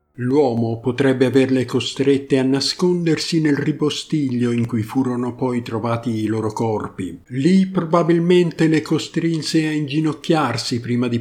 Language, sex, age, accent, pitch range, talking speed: Italian, male, 50-69, native, 120-150 Hz, 130 wpm